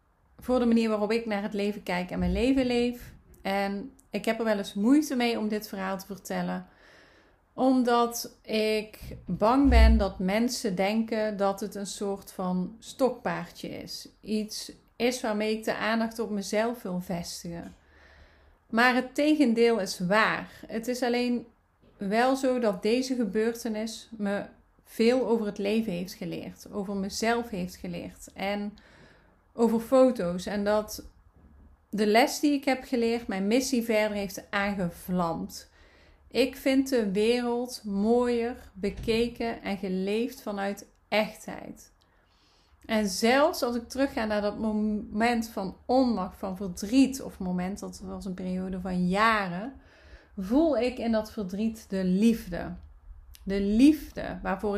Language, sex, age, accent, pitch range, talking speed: Dutch, female, 30-49, Dutch, 190-235 Hz, 140 wpm